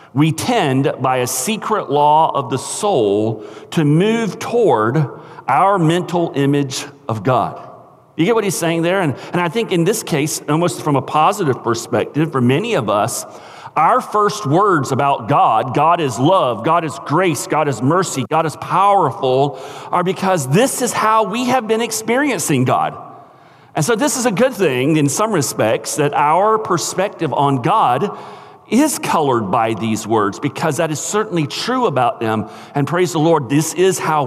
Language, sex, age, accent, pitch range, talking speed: English, male, 40-59, American, 125-180 Hz, 175 wpm